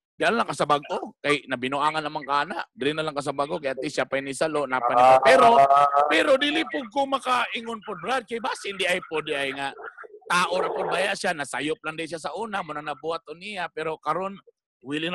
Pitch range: 135-190 Hz